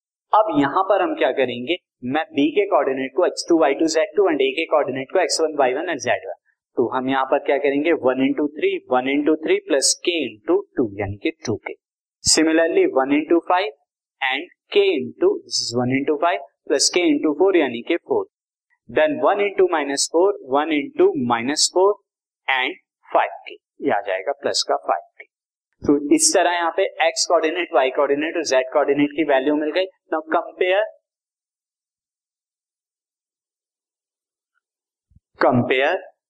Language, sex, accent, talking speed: Hindi, male, native, 105 wpm